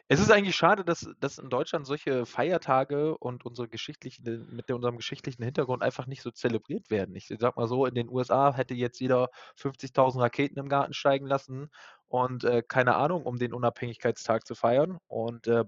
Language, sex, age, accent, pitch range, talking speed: German, male, 20-39, German, 125-150 Hz, 190 wpm